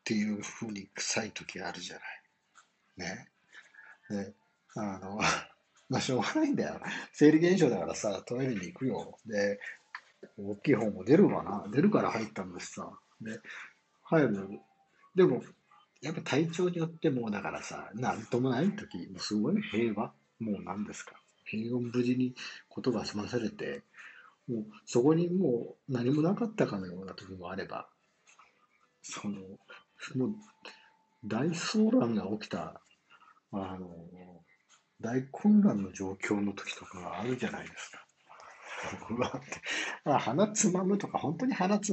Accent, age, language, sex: native, 50-69, Japanese, male